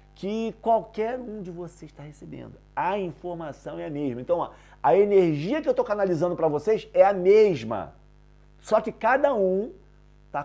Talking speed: 170 wpm